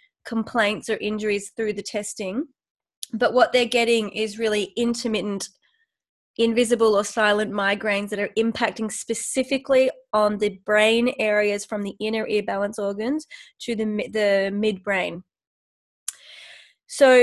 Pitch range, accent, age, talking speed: 210-250 Hz, Australian, 20-39, 125 wpm